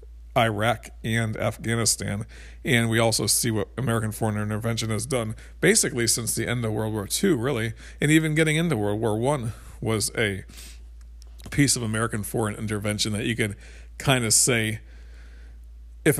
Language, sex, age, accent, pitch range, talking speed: English, male, 40-59, American, 105-120 Hz, 160 wpm